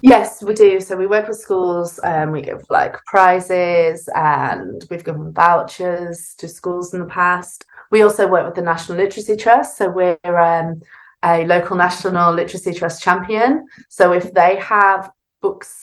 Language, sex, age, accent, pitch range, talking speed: English, female, 20-39, British, 170-195 Hz, 165 wpm